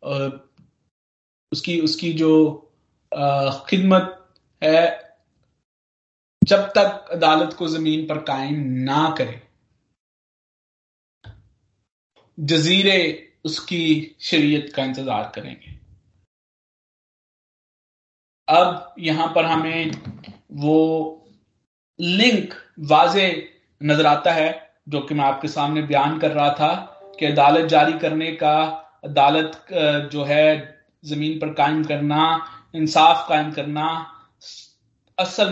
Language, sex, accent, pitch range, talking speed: Hindi, male, native, 150-165 Hz, 95 wpm